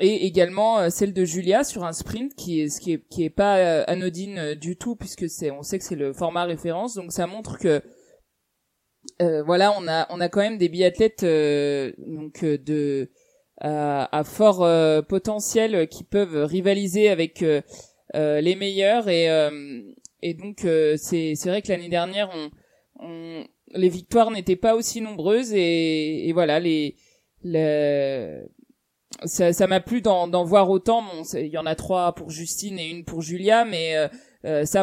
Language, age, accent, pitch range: French, 20-39, French, 160-205 Hz